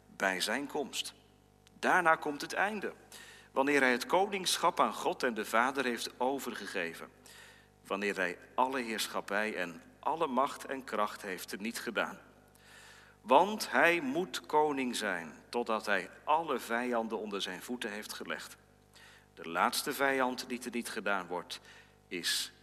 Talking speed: 145 wpm